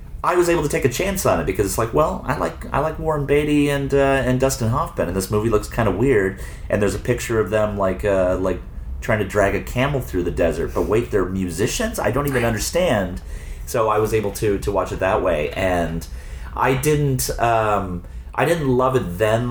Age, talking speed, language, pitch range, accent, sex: 30-49, 230 wpm, English, 85-115 Hz, American, male